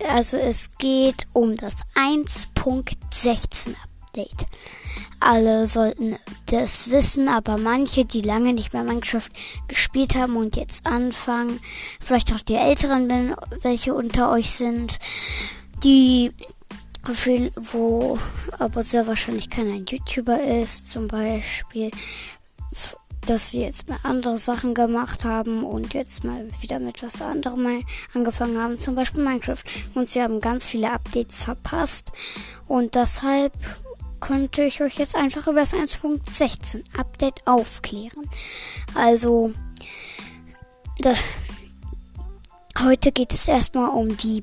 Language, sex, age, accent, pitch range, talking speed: German, female, 20-39, German, 225-265 Hz, 120 wpm